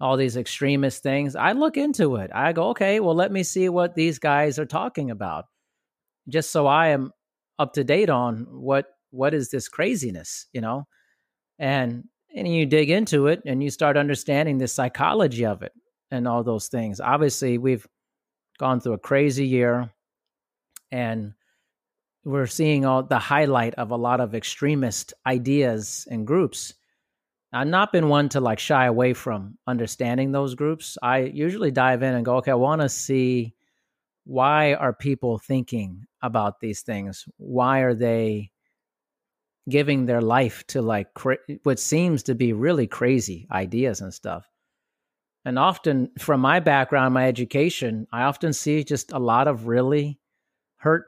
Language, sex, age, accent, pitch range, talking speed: English, male, 30-49, American, 120-145 Hz, 160 wpm